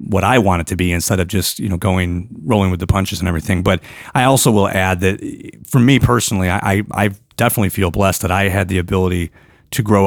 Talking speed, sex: 235 wpm, male